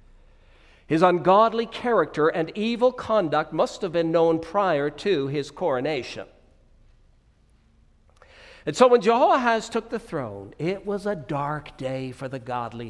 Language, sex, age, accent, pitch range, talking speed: English, male, 60-79, American, 135-225 Hz, 135 wpm